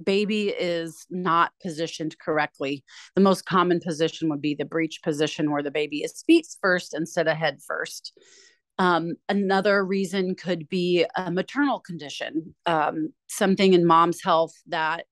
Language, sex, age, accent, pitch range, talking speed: English, female, 30-49, American, 155-190 Hz, 150 wpm